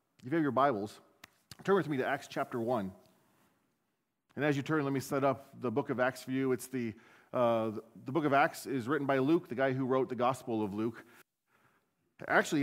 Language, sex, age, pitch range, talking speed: English, male, 40-59, 110-145 Hz, 225 wpm